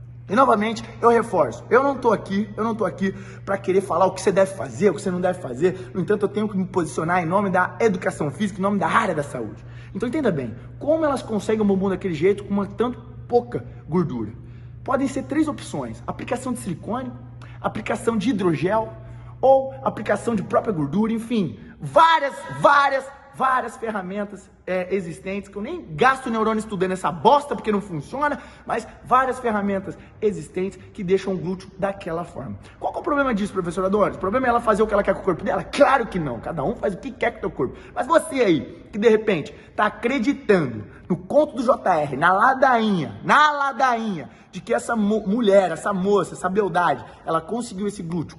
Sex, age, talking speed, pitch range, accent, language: male, 20-39, 205 wpm, 175-230 Hz, Brazilian, Portuguese